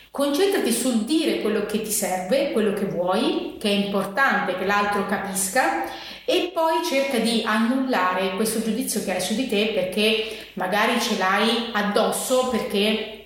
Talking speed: 155 wpm